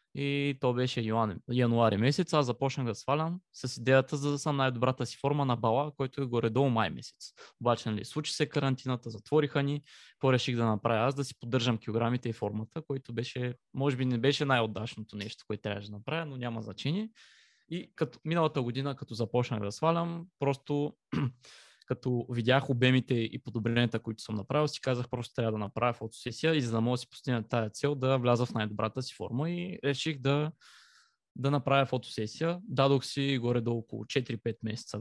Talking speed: 185 wpm